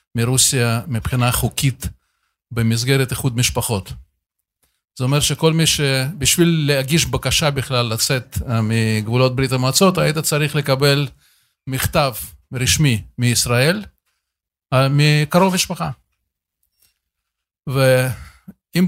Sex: male